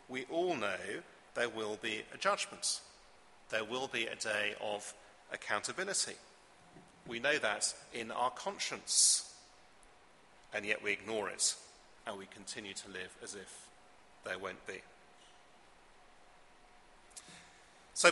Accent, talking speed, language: British, 125 wpm, English